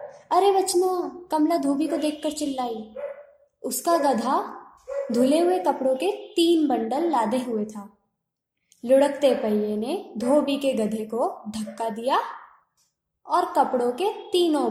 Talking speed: 125 wpm